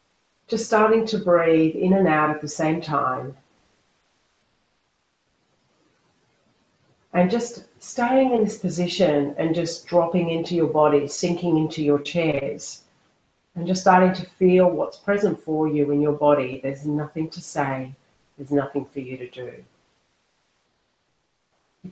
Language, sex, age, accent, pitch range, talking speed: English, female, 40-59, Australian, 150-185 Hz, 135 wpm